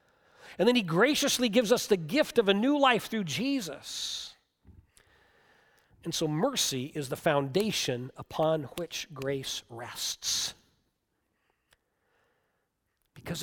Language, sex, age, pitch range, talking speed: English, male, 50-69, 145-230 Hz, 110 wpm